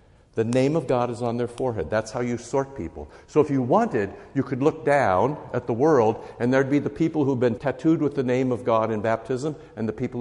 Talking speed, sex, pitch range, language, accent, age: 245 wpm, male, 95-120 Hz, English, American, 60-79